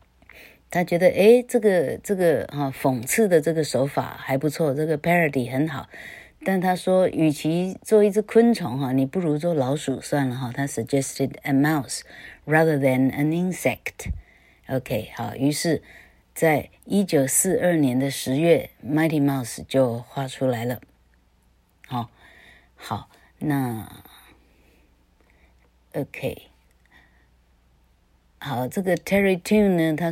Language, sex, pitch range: Chinese, female, 110-160 Hz